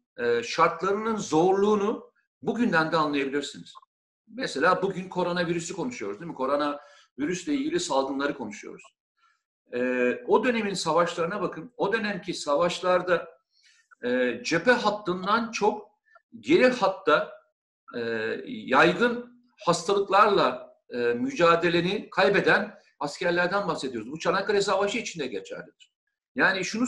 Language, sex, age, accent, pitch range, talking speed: Turkish, male, 50-69, native, 170-250 Hz, 90 wpm